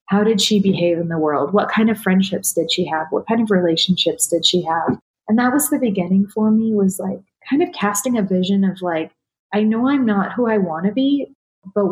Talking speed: 235 wpm